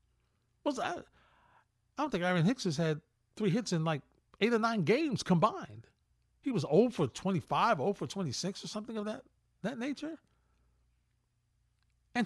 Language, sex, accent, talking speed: English, male, American, 165 wpm